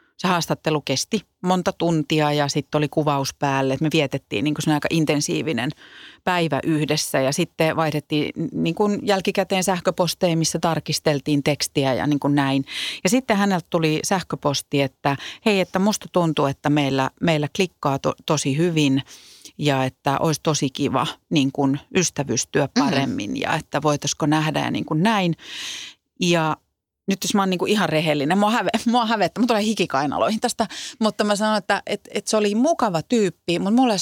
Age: 40-59